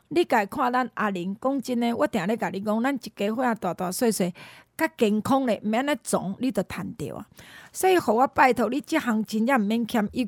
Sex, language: female, Chinese